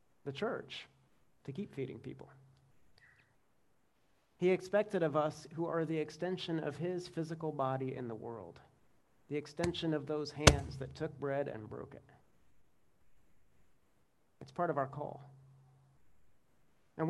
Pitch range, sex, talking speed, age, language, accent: 130-160 Hz, male, 135 wpm, 40-59, English, American